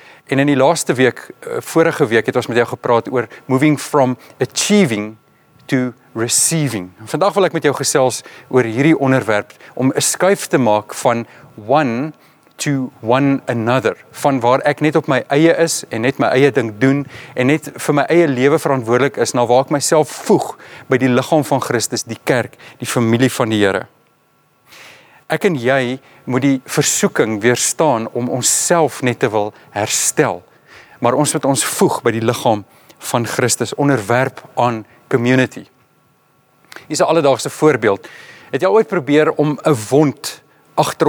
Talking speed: 170 wpm